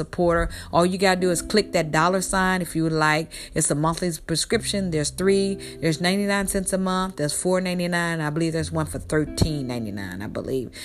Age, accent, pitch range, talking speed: 40-59, American, 155-185 Hz, 200 wpm